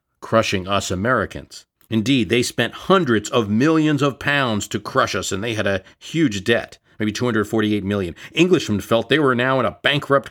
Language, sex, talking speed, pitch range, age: English, male, 175 wpm, 95-125 Hz, 50-69